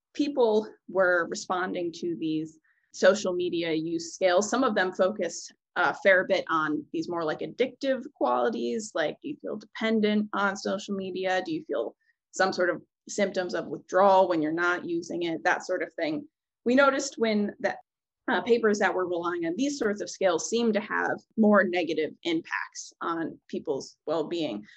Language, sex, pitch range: English, female, 175-255 Hz